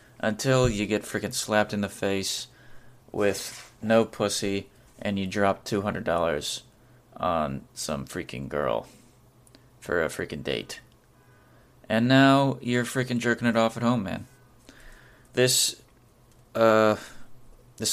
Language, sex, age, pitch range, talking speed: English, male, 20-39, 105-120 Hz, 120 wpm